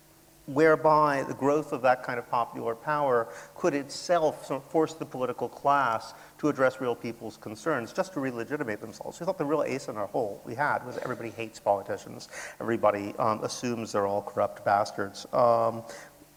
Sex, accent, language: male, American, English